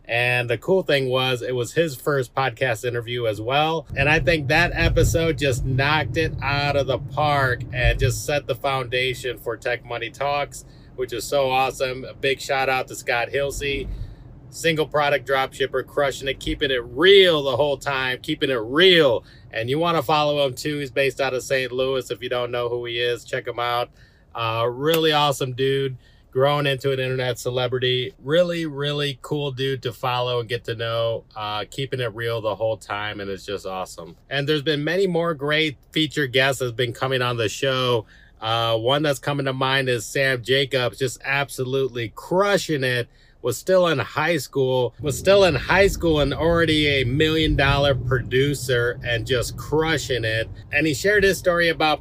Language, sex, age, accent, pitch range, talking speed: English, male, 30-49, American, 125-145 Hz, 190 wpm